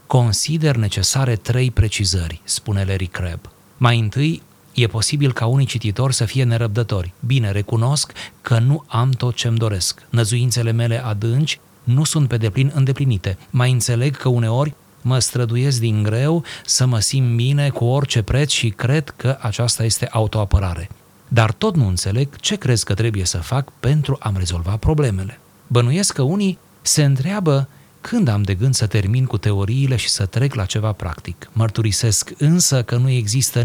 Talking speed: 165 wpm